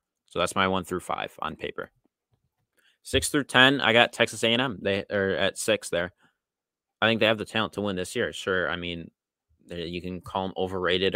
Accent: American